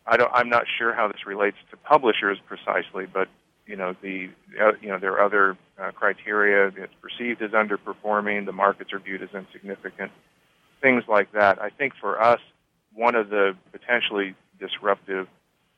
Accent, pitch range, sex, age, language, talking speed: American, 95-110 Hz, male, 40-59, English, 170 wpm